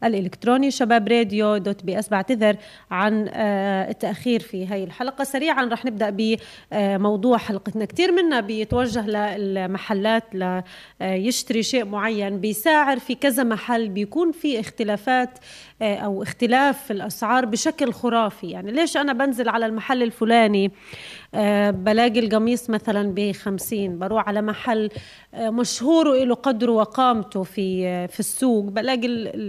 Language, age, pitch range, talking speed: Arabic, 30-49, 205-250 Hz, 120 wpm